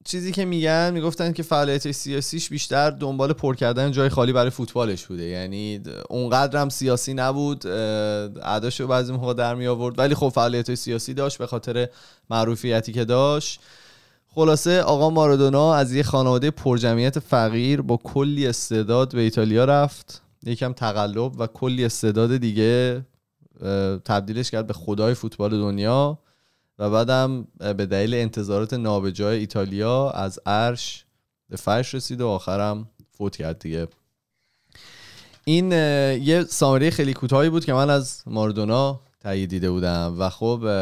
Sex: male